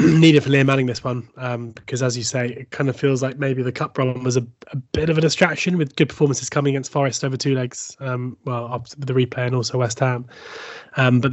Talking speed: 245 wpm